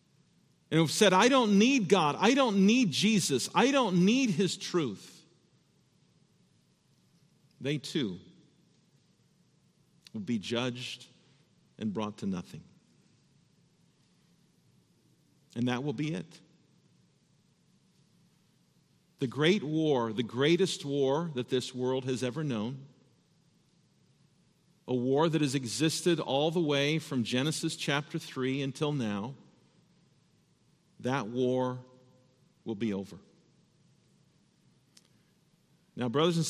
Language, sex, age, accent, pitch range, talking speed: English, male, 50-69, American, 130-175 Hz, 105 wpm